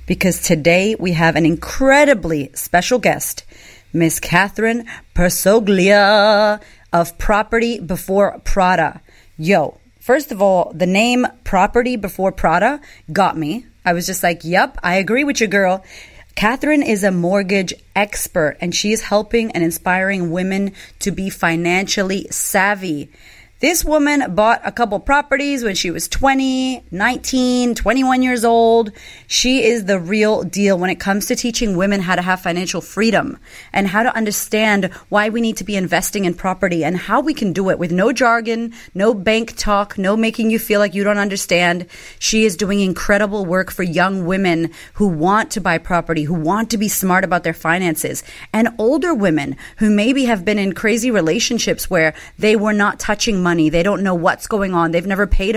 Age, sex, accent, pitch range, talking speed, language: 30-49, female, American, 175-220 Hz, 175 wpm, English